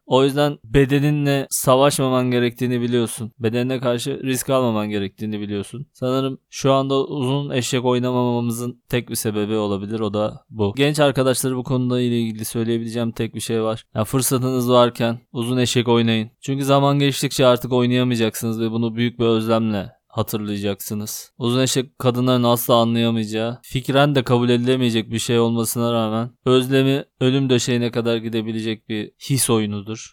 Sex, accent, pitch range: male, native, 115-130 Hz